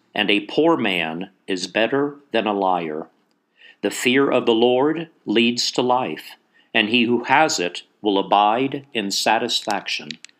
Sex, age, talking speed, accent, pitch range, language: male, 50-69, 150 wpm, American, 105-135 Hz, English